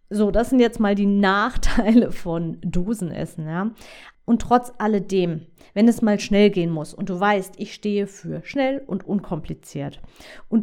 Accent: German